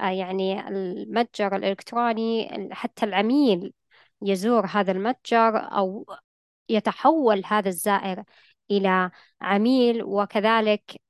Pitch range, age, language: 200-235 Hz, 20-39, Arabic